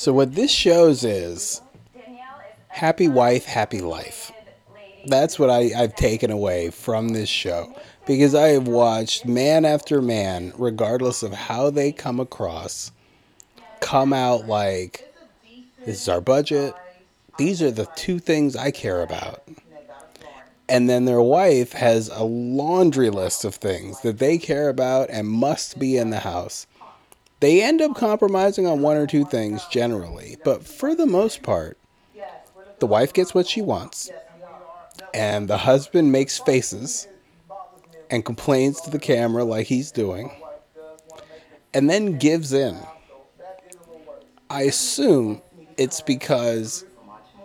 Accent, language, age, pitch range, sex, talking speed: American, English, 30-49, 120-170 Hz, male, 135 wpm